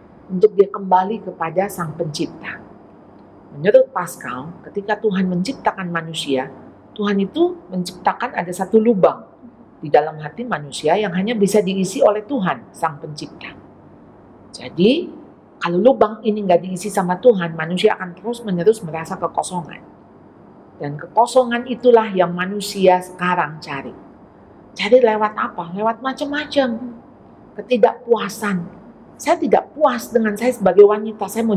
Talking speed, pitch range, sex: 125 wpm, 180-240 Hz, female